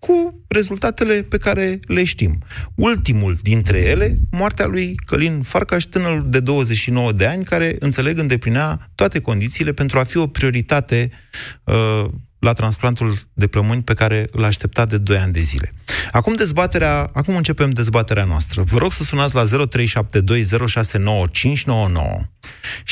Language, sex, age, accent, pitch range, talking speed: Romanian, male, 30-49, native, 105-140 Hz, 140 wpm